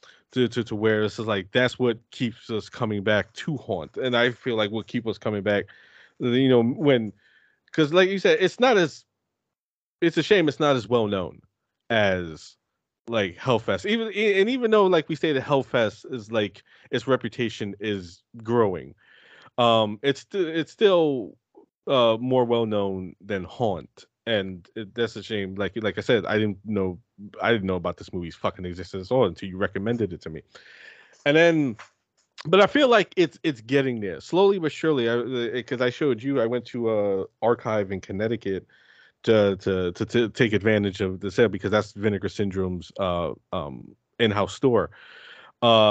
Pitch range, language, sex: 100-130 Hz, English, male